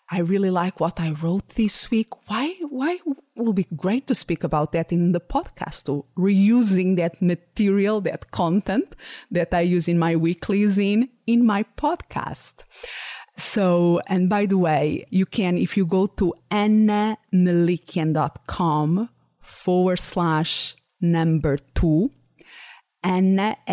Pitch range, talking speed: 165-195 Hz, 135 wpm